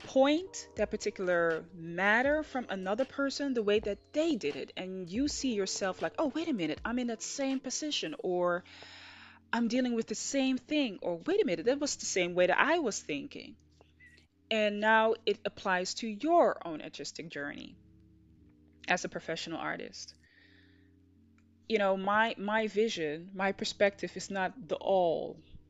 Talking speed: 165 wpm